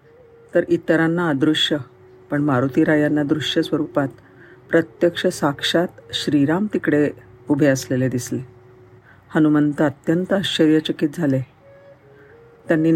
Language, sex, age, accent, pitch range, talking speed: Marathi, female, 50-69, native, 140-175 Hz, 90 wpm